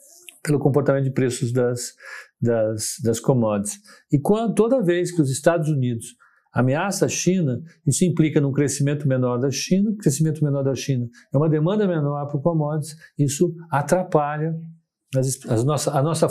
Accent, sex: Brazilian, male